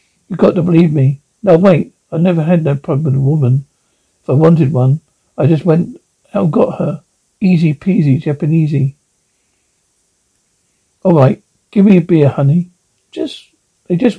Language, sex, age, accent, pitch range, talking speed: English, male, 60-79, British, 145-180 Hz, 160 wpm